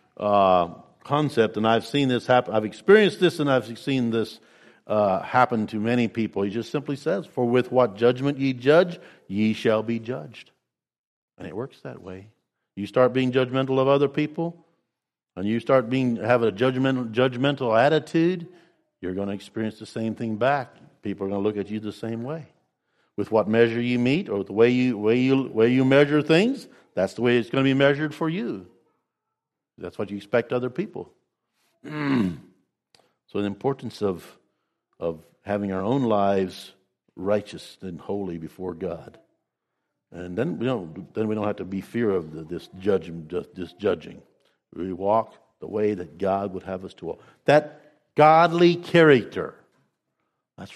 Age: 50-69